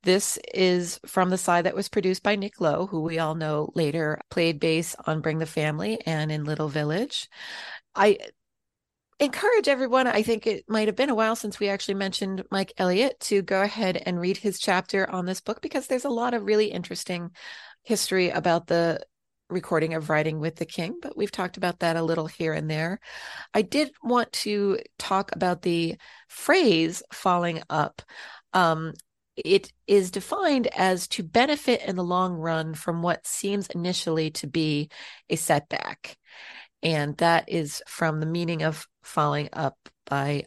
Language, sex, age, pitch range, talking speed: English, female, 30-49, 160-210 Hz, 175 wpm